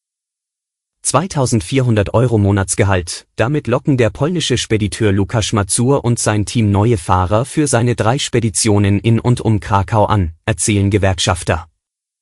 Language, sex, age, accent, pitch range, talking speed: German, male, 30-49, German, 100-125 Hz, 125 wpm